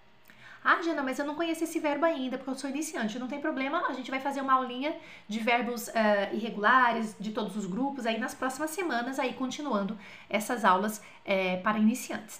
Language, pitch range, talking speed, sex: French, 205-280 Hz, 200 wpm, female